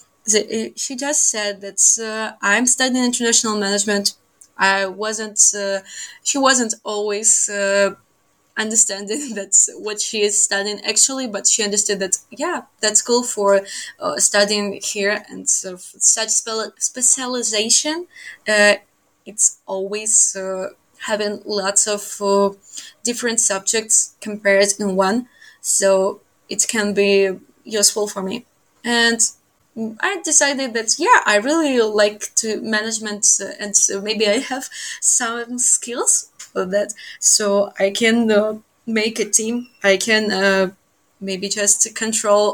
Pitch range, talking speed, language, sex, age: 200-230 Hz, 135 wpm, English, female, 20-39